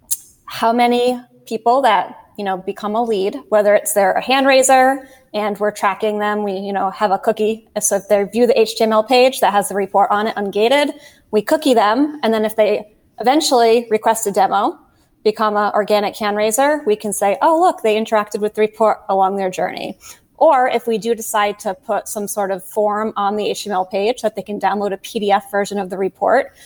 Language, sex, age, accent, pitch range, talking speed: English, female, 20-39, American, 200-225 Hz, 205 wpm